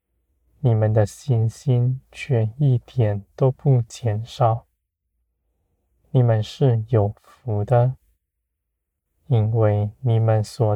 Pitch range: 75-125 Hz